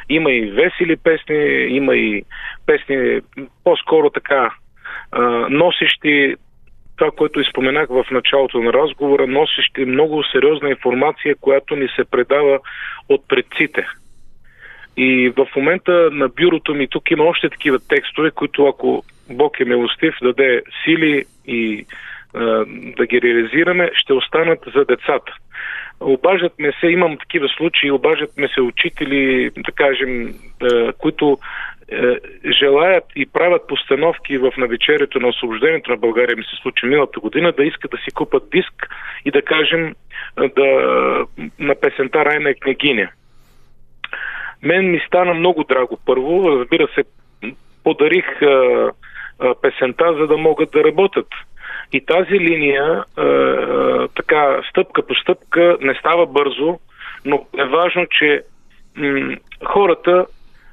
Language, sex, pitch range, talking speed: Bulgarian, male, 135-180 Hz, 125 wpm